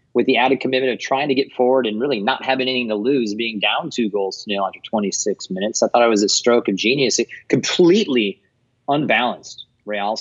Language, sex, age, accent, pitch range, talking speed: English, male, 30-49, American, 105-130 Hz, 210 wpm